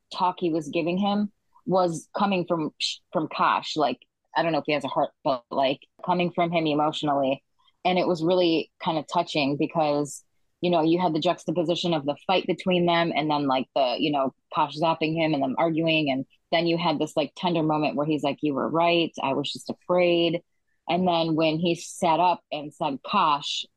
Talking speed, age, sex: 210 wpm, 20-39, female